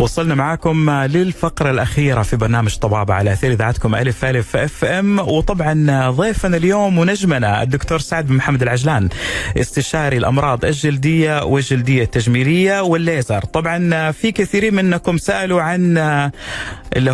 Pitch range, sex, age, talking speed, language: 125-165 Hz, male, 30-49, 125 wpm, Arabic